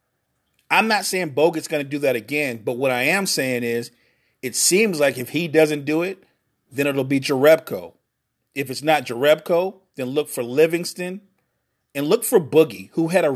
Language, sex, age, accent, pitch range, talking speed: English, male, 40-59, American, 135-185 Hz, 190 wpm